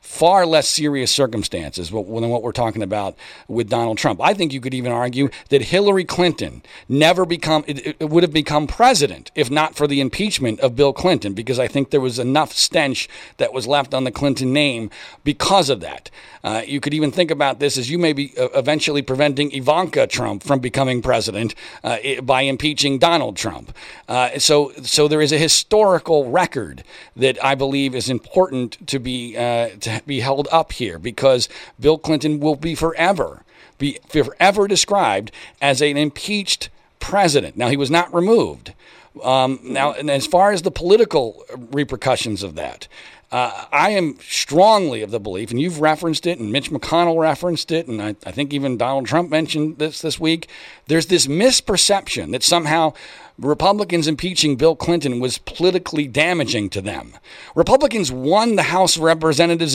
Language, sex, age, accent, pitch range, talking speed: English, male, 50-69, American, 130-170 Hz, 175 wpm